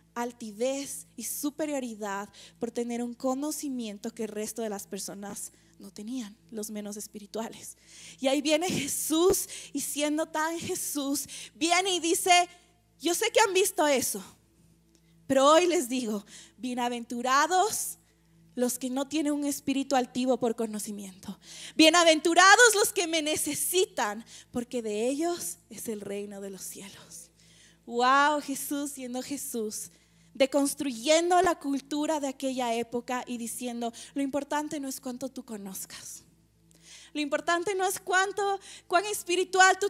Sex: female